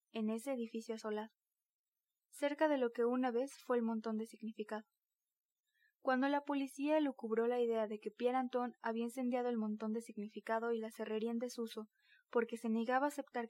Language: Spanish